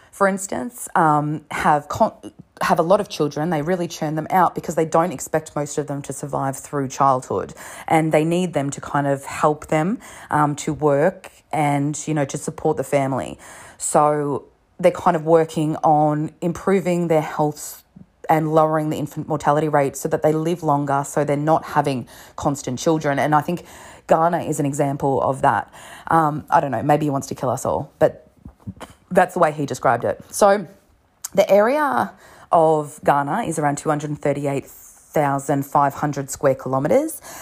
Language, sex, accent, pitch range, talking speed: English, female, Australian, 145-170 Hz, 175 wpm